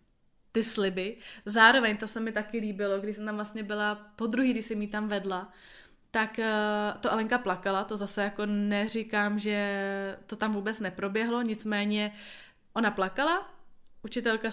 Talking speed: 155 wpm